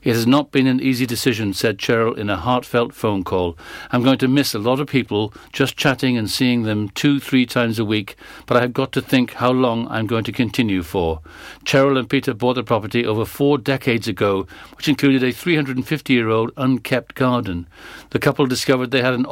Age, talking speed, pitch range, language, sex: 60-79, 210 wpm, 120-140 Hz, English, male